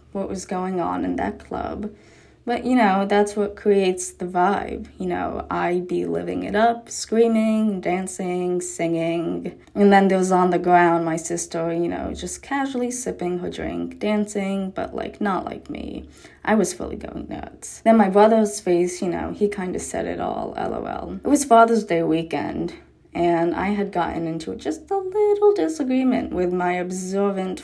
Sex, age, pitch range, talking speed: female, 20-39, 180-230 Hz, 180 wpm